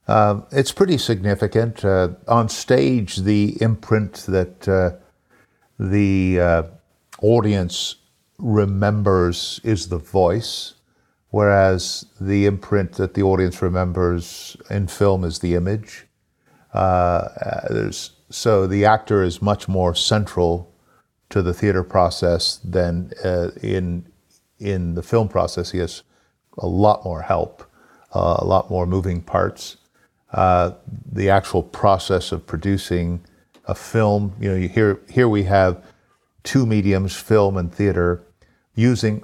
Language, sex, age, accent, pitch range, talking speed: English, male, 50-69, American, 90-105 Hz, 125 wpm